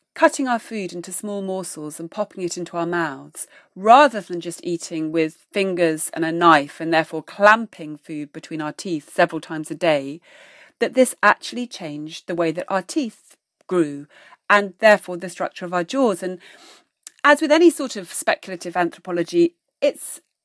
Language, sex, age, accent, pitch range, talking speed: English, female, 40-59, British, 170-245 Hz, 170 wpm